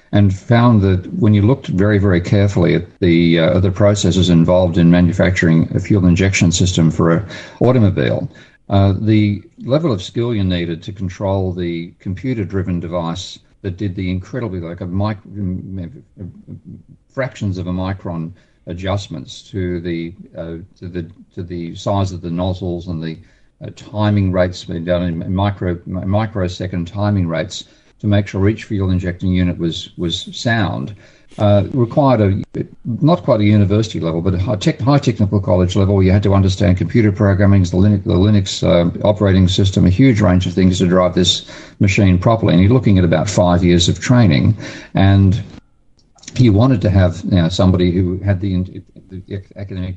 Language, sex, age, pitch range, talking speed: English, male, 50-69, 90-105 Hz, 170 wpm